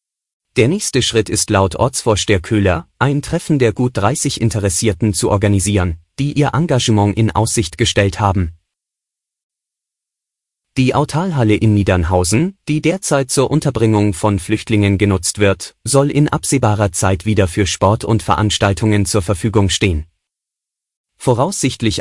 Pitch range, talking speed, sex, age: 100-125 Hz, 130 wpm, male, 30-49